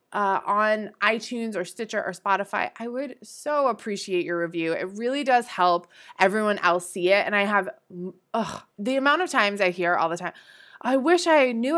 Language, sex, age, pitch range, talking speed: English, female, 20-39, 180-235 Hz, 195 wpm